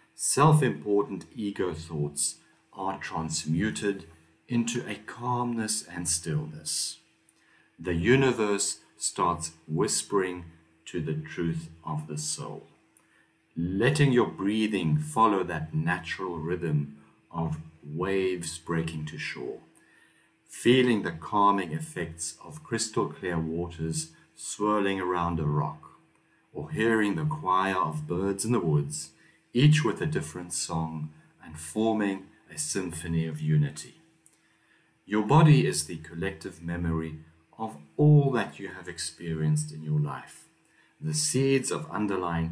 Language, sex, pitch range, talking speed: English, male, 80-115 Hz, 115 wpm